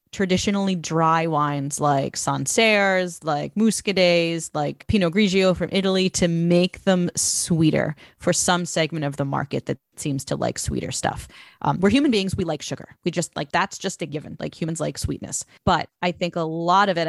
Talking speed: 185 wpm